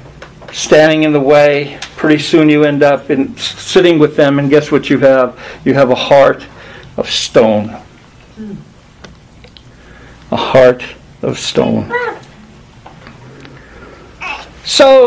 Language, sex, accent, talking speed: English, male, American, 115 wpm